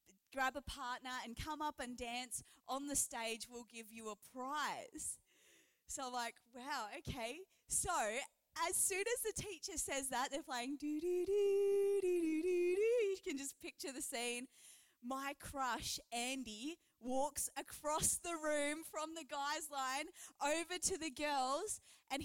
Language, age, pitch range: English, 20-39, 250-325 Hz